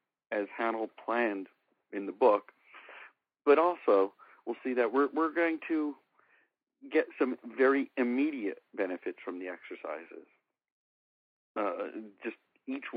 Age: 50-69